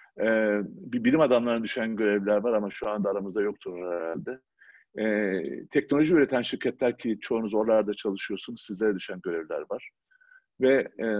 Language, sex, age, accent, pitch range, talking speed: Turkish, male, 50-69, native, 105-135 Hz, 145 wpm